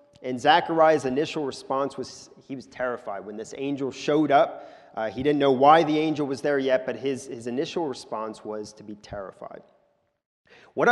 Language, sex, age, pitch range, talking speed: English, male, 30-49, 130-165 Hz, 180 wpm